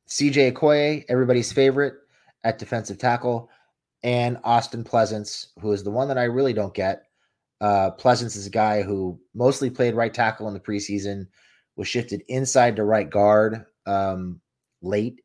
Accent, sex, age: American, male, 30-49